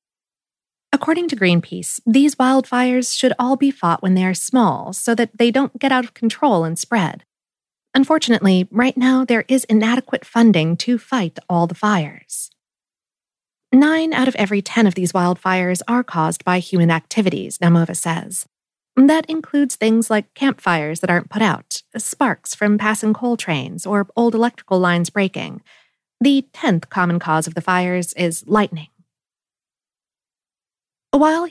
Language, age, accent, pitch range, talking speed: English, 40-59, American, 180-250 Hz, 150 wpm